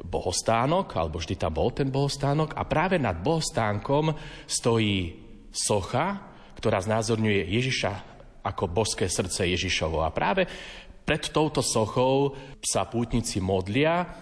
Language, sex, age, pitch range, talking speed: Slovak, male, 30-49, 100-130 Hz, 120 wpm